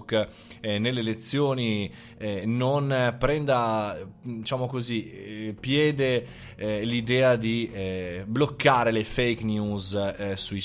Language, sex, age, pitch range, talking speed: Italian, male, 20-39, 100-135 Hz, 80 wpm